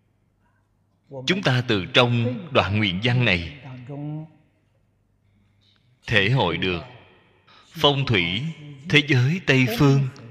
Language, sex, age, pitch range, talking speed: Vietnamese, male, 20-39, 100-140 Hz, 100 wpm